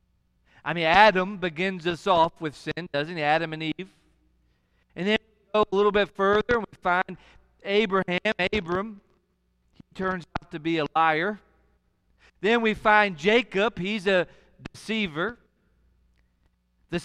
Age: 40-59